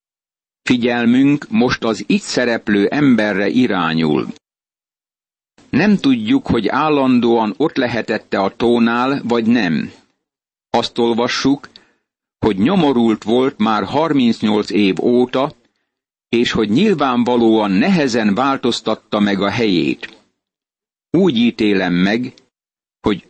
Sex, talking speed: male, 100 wpm